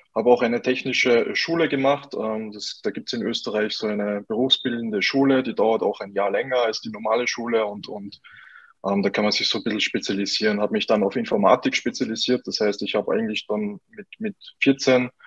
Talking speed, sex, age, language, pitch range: 205 wpm, male, 20-39, German, 110-135 Hz